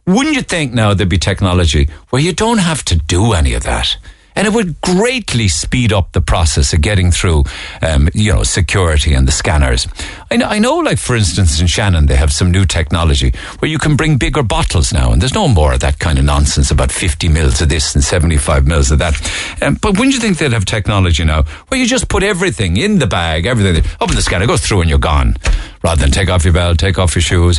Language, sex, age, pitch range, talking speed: English, male, 60-79, 80-110 Hz, 240 wpm